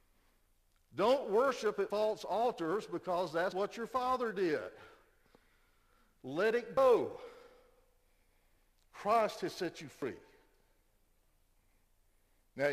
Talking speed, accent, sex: 95 wpm, American, male